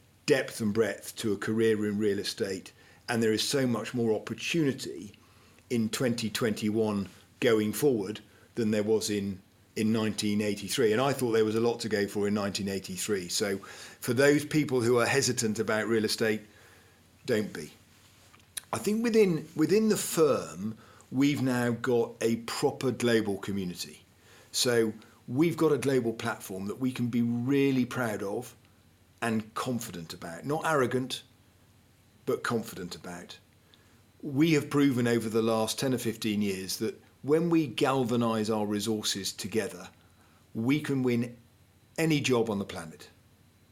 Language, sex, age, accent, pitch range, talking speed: English, male, 40-59, British, 105-130 Hz, 150 wpm